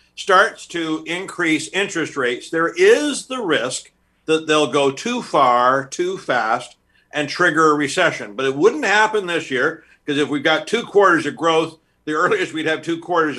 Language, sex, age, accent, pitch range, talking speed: English, male, 50-69, American, 140-175 Hz, 180 wpm